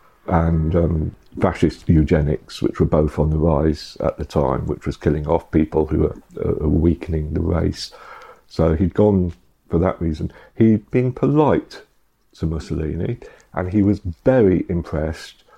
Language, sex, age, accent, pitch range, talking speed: English, male, 50-69, British, 80-95 Hz, 155 wpm